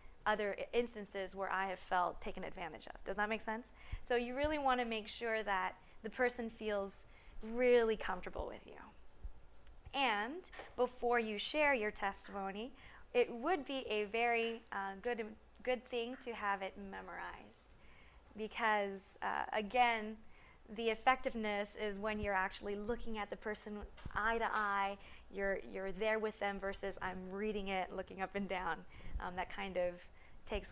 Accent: American